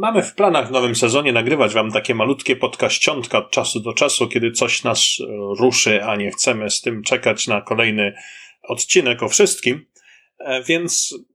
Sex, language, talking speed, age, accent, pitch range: male, Polish, 165 wpm, 40-59, native, 115-150 Hz